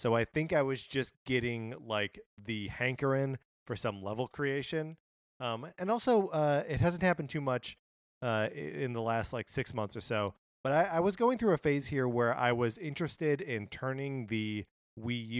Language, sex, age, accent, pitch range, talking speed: English, male, 30-49, American, 105-140 Hz, 190 wpm